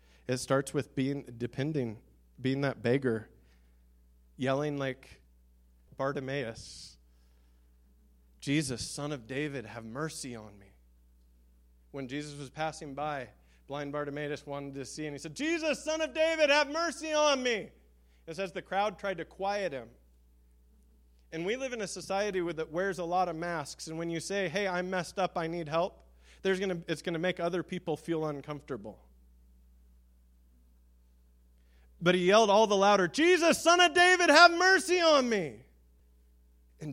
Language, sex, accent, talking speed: English, male, American, 155 wpm